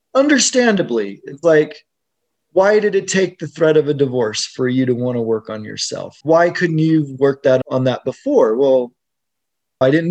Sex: male